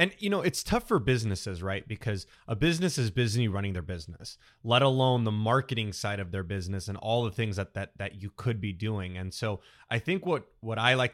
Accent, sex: American, male